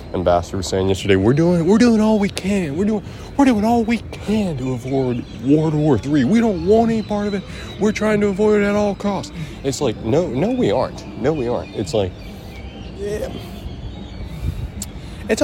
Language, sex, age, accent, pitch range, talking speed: English, male, 20-39, American, 95-140 Hz, 200 wpm